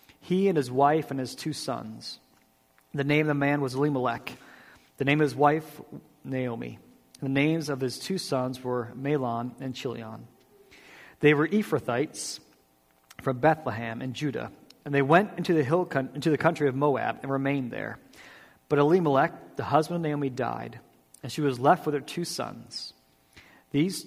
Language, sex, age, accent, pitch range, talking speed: English, male, 40-59, American, 130-155 Hz, 165 wpm